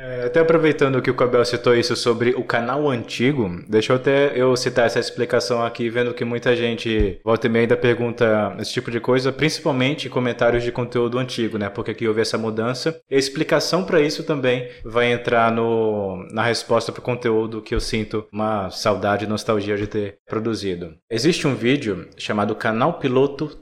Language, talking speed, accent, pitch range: English, 185 wpm, Brazilian, 110-125 Hz